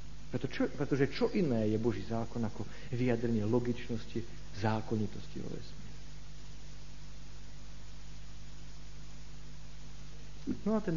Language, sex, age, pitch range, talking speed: Slovak, male, 50-69, 115-180 Hz, 95 wpm